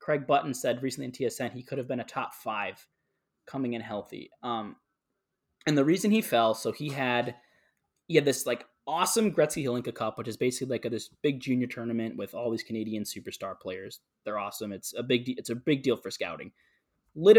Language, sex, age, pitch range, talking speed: English, male, 20-39, 120-150 Hz, 210 wpm